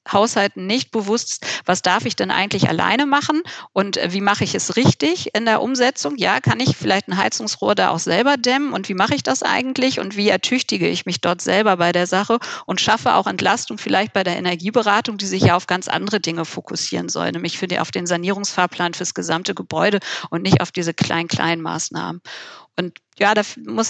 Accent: German